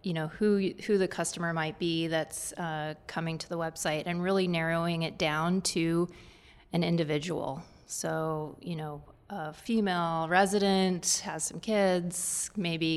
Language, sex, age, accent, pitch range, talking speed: English, female, 30-49, American, 165-190 Hz, 150 wpm